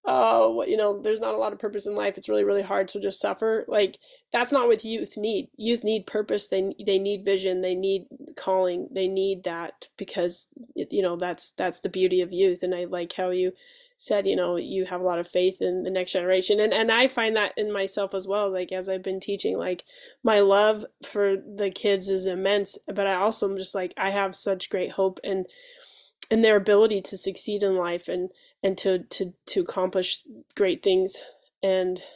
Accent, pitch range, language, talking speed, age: American, 185-230 Hz, English, 215 wpm, 20-39